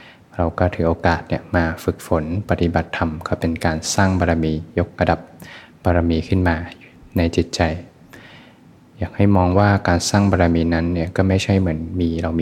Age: 20-39